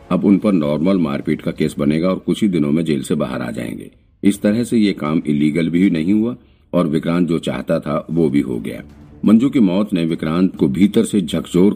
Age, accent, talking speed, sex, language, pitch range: 50-69, native, 230 wpm, male, Hindi, 75-95 Hz